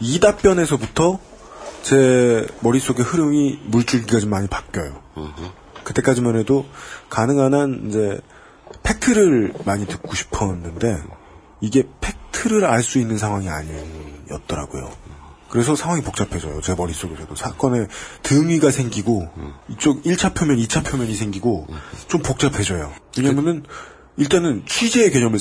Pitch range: 95-145 Hz